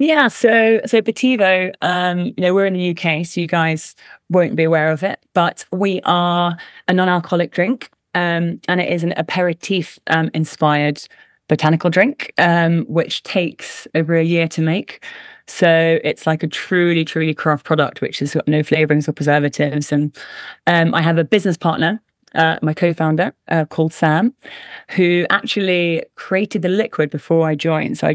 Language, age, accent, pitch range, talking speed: English, 20-39, British, 160-185 Hz, 175 wpm